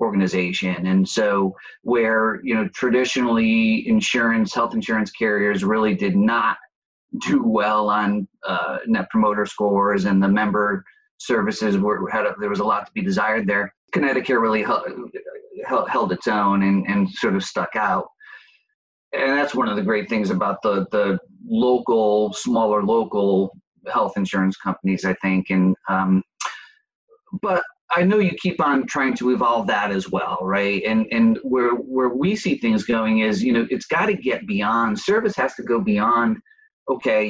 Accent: American